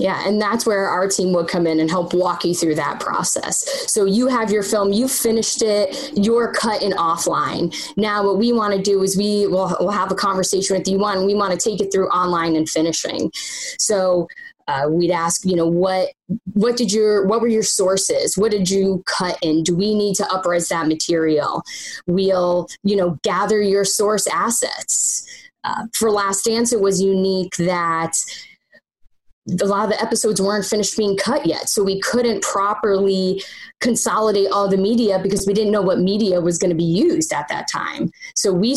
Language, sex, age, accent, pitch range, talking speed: English, female, 10-29, American, 185-215 Hz, 195 wpm